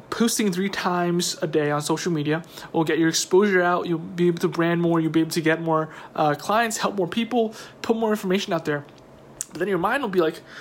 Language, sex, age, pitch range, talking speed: English, male, 20-39, 160-190 Hz, 240 wpm